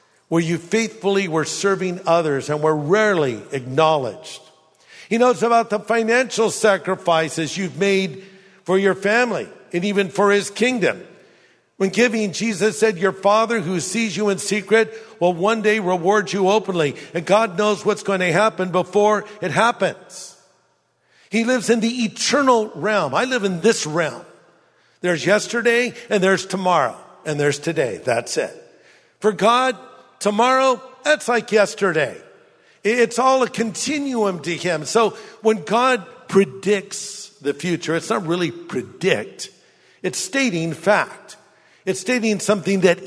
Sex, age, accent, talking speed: male, 50-69, American, 145 wpm